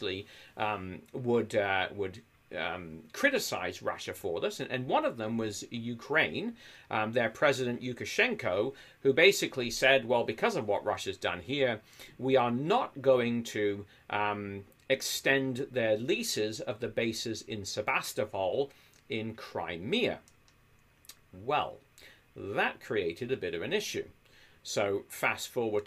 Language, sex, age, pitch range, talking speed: English, male, 40-59, 110-135 Hz, 135 wpm